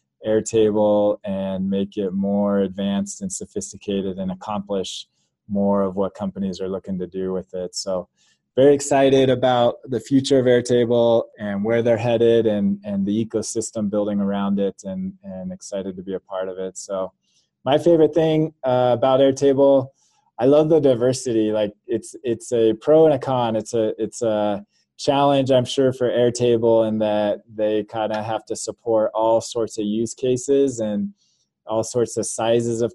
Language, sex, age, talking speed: English, male, 20-39, 175 wpm